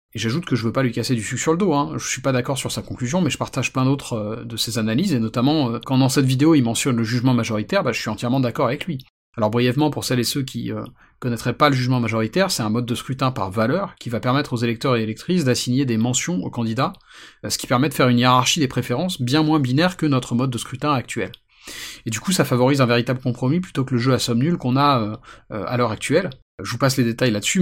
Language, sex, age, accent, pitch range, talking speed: French, male, 30-49, French, 115-145 Hz, 270 wpm